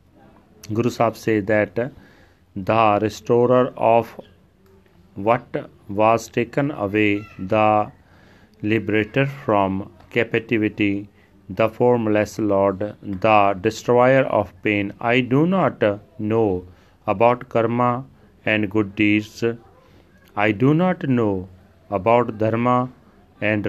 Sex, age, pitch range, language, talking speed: male, 40-59, 100-125 Hz, Punjabi, 95 wpm